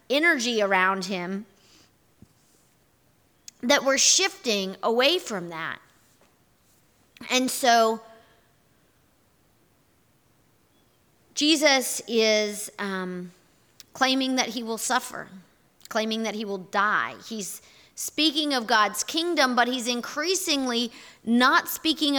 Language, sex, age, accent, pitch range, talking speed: English, female, 40-59, American, 215-275 Hz, 90 wpm